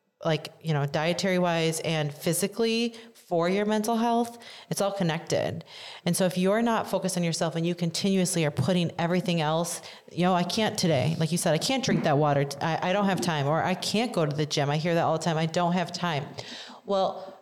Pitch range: 160-190 Hz